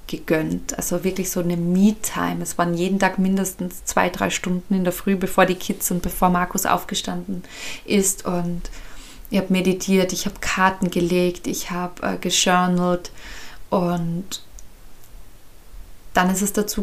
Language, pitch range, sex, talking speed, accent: German, 175-195 Hz, female, 145 wpm, German